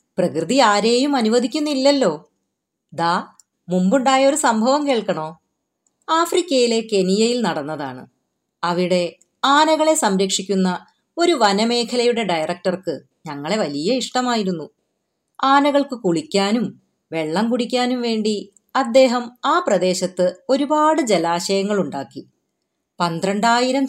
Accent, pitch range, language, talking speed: native, 180-250 Hz, Malayalam, 80 wpm